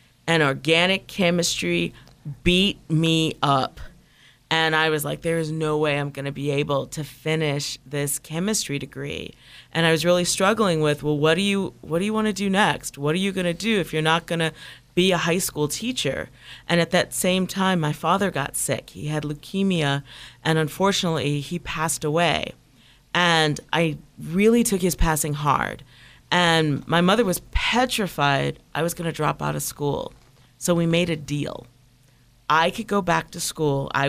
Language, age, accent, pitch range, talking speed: English, 40-59, American, 145-175 Hz, 175 wpm